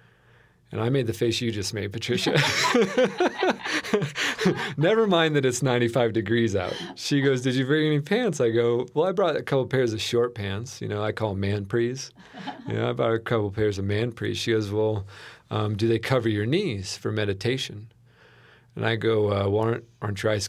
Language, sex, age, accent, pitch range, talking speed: English, male, 40-59, American, 105-125 Hz, 200 wpm